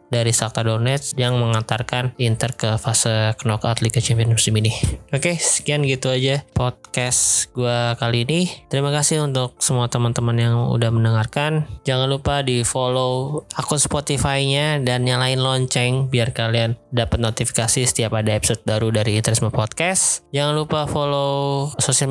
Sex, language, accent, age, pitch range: male, Chinese, Indonesian, 20-39, 115-140 Hz